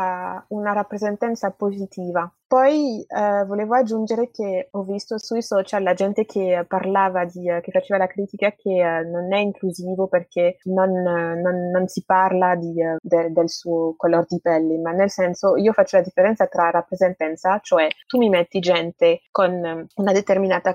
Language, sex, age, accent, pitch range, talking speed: Italian, female, 20-39, native, 175-205 Hz, 160 wpm